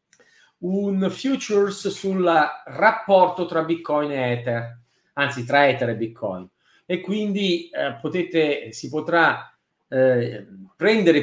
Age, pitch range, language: 40-59, 140-195 Hz, Italian